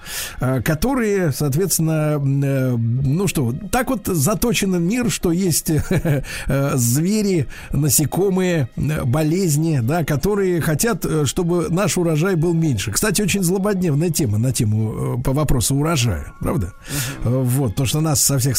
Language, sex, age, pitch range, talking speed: Russian, male, 50-69, 125-160 Hz, 120 wpm